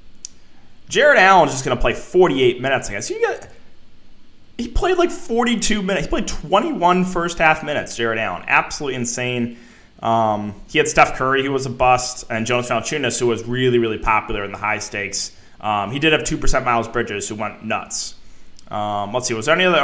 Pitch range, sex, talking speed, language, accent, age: 115-140 Hz, male, 195 wpm, English, American, 20-39